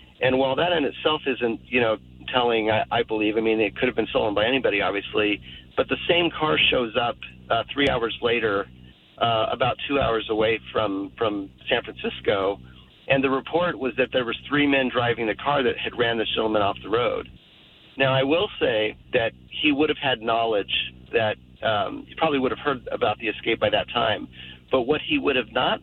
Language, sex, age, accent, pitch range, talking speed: English, male, 40-59, American, 105-135 Hz, 210 wpm